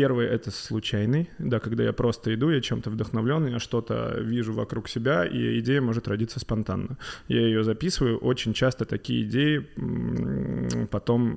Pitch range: 115-135 Hz